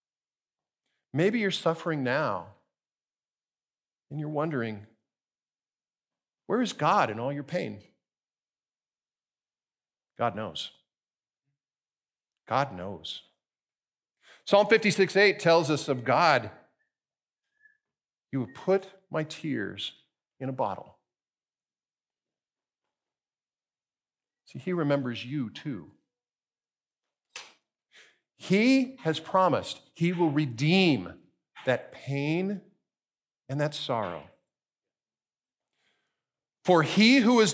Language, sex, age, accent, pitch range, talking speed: English, male, 50-69, American, 150-210 Hz, 85 wpm